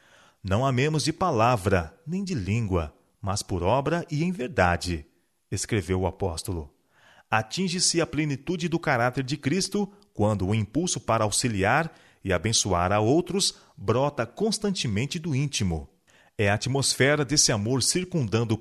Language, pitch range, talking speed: Portuguese, 105-150 Hz, 140 wpm